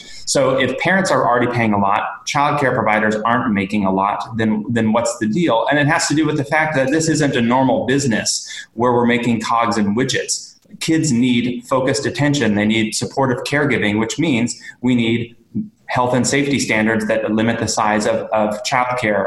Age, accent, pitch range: 20-39, American, 110-135 Hz